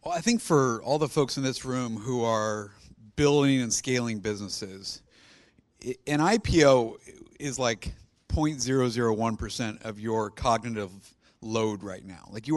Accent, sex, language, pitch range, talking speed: American, male, English, 115-150 Hz, 140 wpm